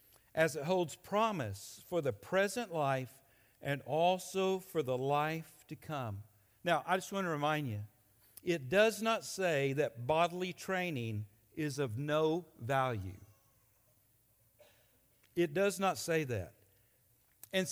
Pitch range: 125-180 Hz